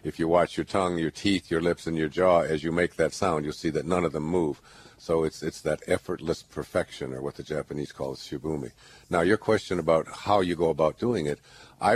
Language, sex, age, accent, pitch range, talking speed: English, male, 60-79, American, 75-85 Hz, 235 wpm